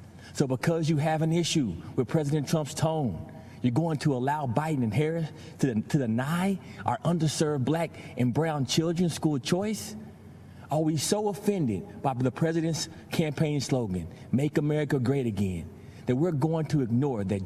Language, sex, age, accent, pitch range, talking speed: English, male, 30-49, American, 125-175 Hz, 160 wpm